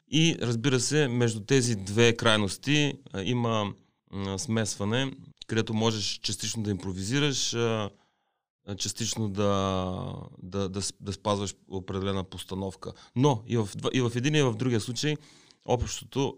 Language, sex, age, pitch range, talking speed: Bulgarian, male, 30-49, 95-120 Hz, 110 wpm